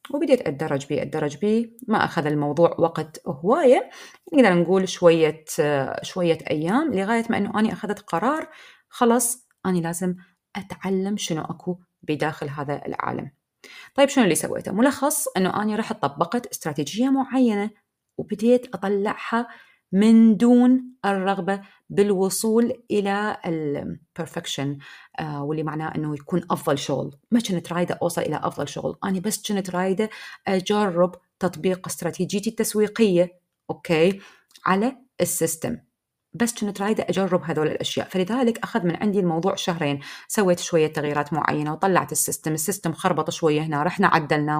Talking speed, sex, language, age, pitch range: 130 wpm, female, Arabic, 30-49, 165-230 Hz